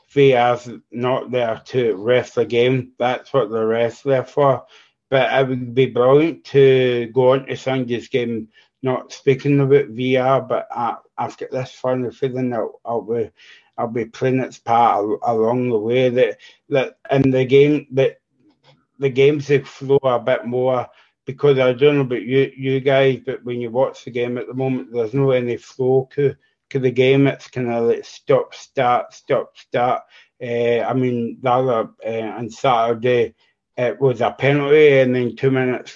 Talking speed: 180 wpm